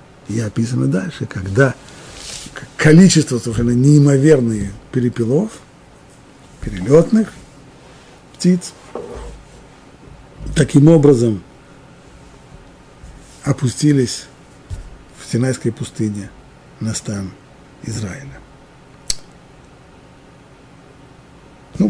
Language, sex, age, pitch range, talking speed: Russian, male, 50-69, 110-150 Hz, 55 wpm